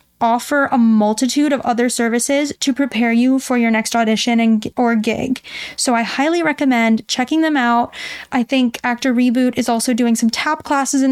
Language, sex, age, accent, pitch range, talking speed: English, female, 10-29, American, 230-270 Hz, 185 wpm